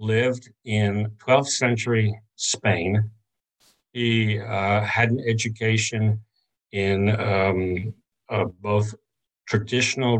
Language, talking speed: English, 90 wpm